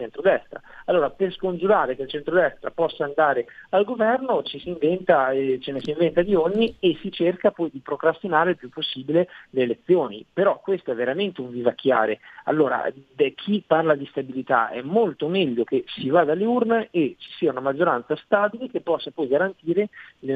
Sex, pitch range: male, 135-185 Hz